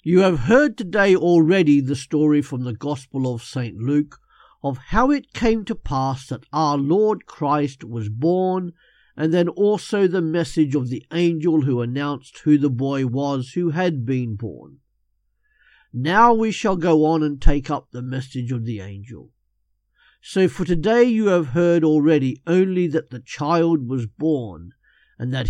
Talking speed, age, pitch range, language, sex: 165 wpm, 50-69, 125-175 Hz, English, male